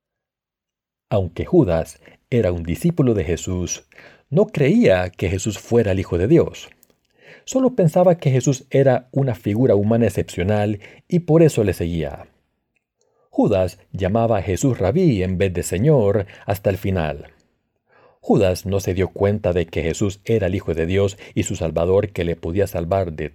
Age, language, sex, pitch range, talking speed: 50-69, Spanish, male, 90-120 Hz, 160 wpm